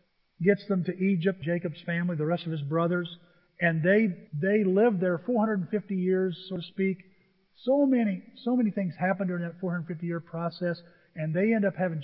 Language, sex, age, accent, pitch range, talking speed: English, male, 50-69, American, 160-195 Hz, 185 wpm